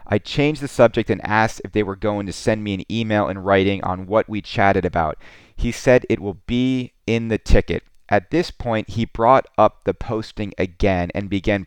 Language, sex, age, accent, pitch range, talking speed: English, male, 30-49, American, 95-120 Hz, 210 wpm